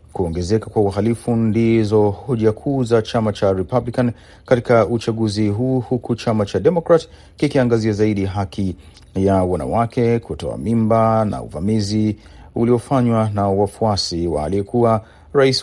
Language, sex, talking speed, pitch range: Swahili, male, 115 wpm, 95-125 Hz